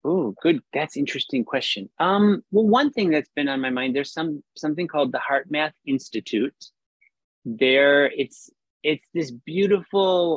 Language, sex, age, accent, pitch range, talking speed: English, male, 30-49, American, 125-170 Hz, 155 wpm